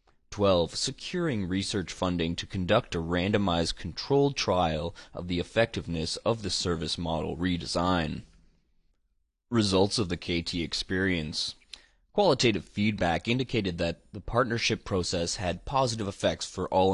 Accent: American